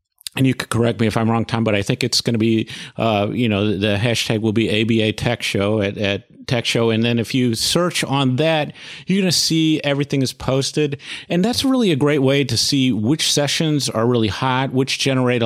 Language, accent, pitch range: English, American, 115-140 Hz